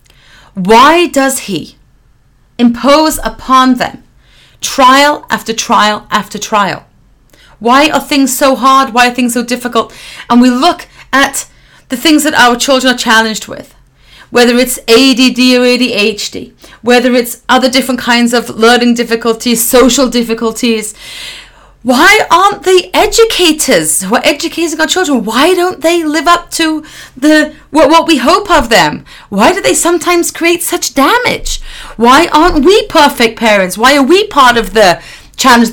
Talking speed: 150 wpm